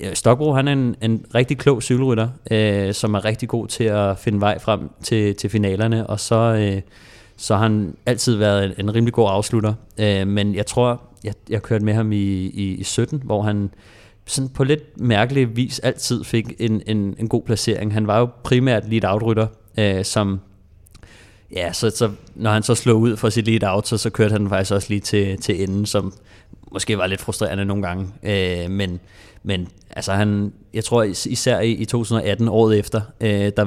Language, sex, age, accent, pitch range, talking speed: Danish, male, 30-49, native, 100-115 Hz, 195 wpm